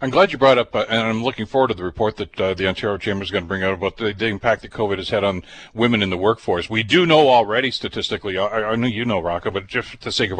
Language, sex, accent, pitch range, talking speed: English, male, American, 105-130 Hz, 305 wpm